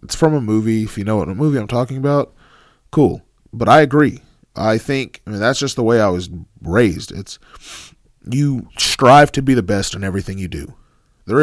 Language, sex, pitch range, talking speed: English, male, 100-130 Hz, 205 wpm